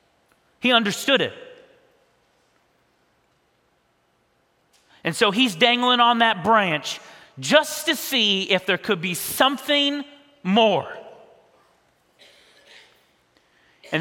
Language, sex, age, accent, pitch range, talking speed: English, male, 40-59, American, 175-245 Hz, 85 wpm